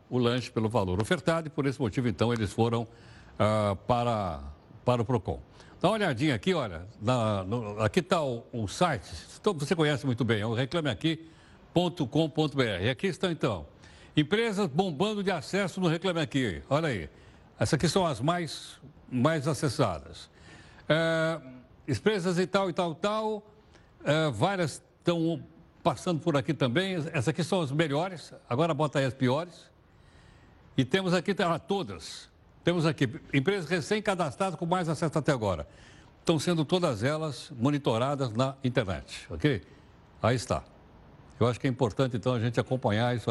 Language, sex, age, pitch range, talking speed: Portuguese, male, 60-79, 115-165 Hz, 150 wpm